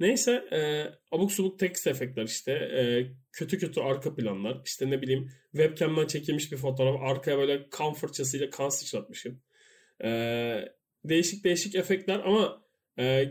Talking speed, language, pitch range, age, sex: 140 wpm, Turkish, 130-190 Hz, 30-49, male